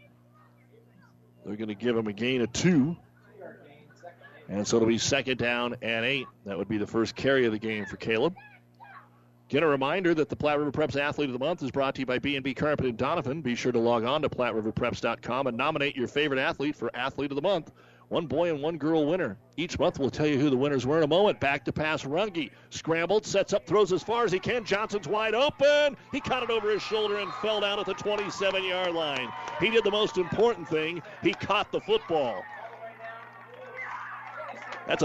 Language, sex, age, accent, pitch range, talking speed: English, male, 40-59, American, 120-170 Hz, 210 wpm